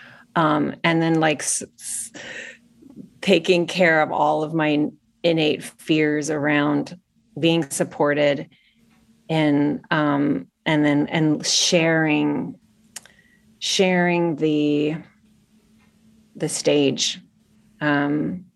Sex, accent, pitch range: female, American, 150-180 Hz